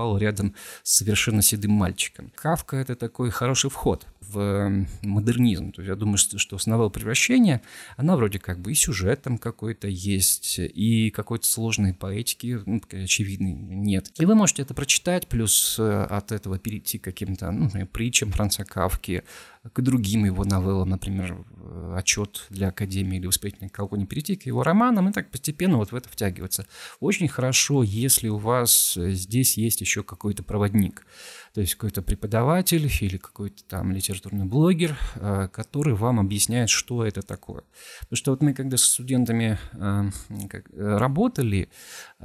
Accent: native